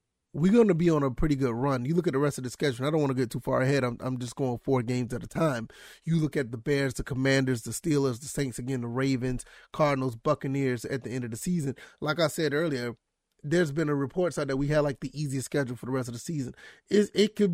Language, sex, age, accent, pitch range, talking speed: English, male, 30-49, American, 135-160 Hz, 280 wpm